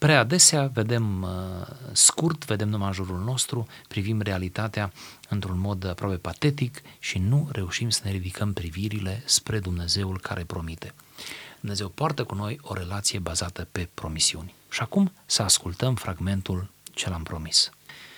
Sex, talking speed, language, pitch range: male, 140 wpm, Romanian, 95-135 Hz